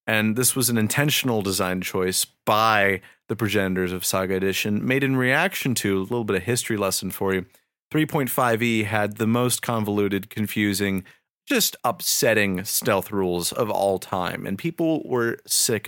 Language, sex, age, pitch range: English, male, 30-49, 100-150 Hz